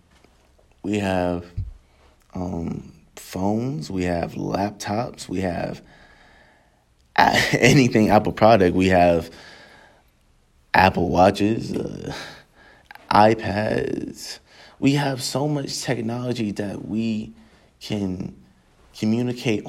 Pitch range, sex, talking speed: 90-115 Hz, male, 80 wpm